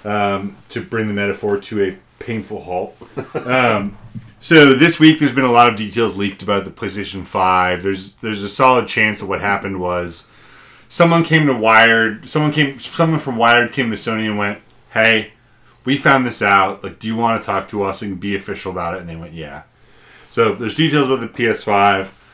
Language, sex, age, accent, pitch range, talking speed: English, male, 30-49, American, 100-130 Hz, 205 wpm